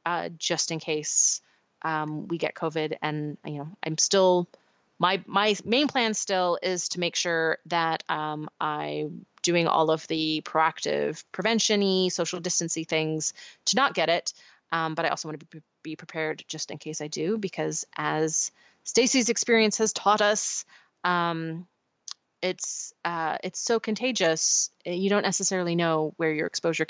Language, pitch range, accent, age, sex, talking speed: English, 160-185 Hz, American, 30-49, female, 160 wpm